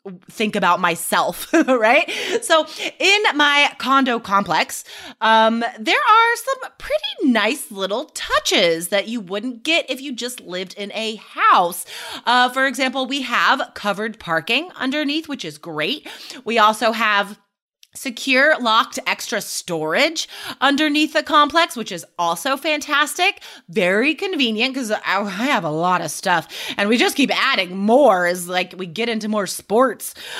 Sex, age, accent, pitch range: female, 30-49, American, 215-315 Hz